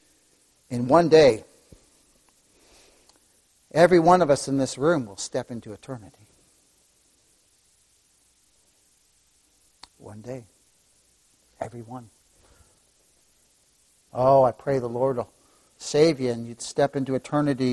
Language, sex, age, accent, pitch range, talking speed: English, male, 60-79, American, 120-180 Hz, 105 wpm